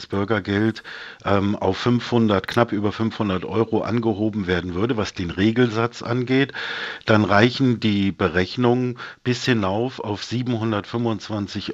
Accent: German